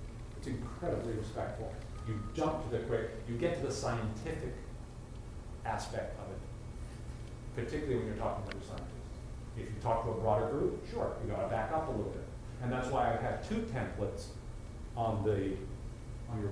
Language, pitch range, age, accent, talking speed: English, 110-130 Hz, 40-59, American, 175 wpm